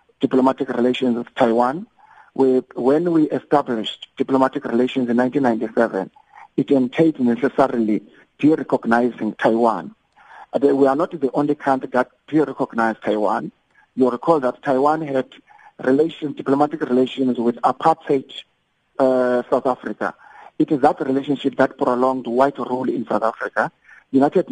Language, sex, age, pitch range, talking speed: English, male, 50-69, 125-150 Hz, 125 wpm